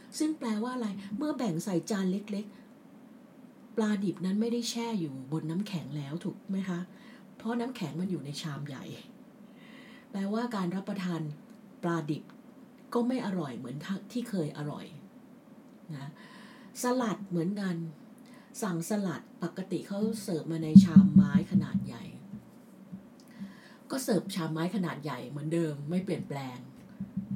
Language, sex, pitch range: English, female, 165-235 Hz